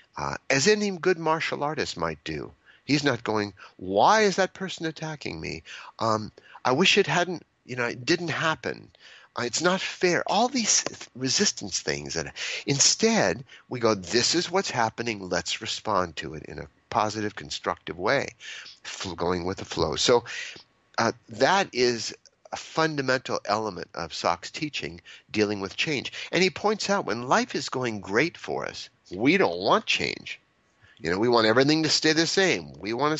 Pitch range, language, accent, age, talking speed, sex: 110-170 Hz, English, American, 50-69, 170 wpm, male